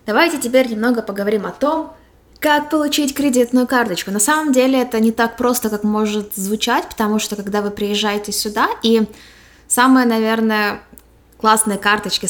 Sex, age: female, 20-39